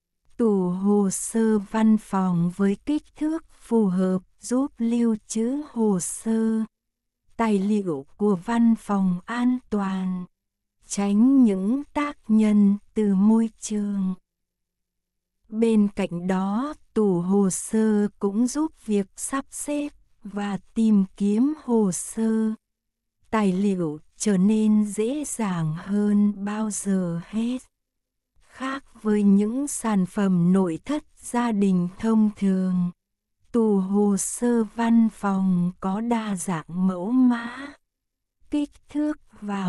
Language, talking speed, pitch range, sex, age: Vietnamese, 120 wpm, 190-230 Hz, female, 60-79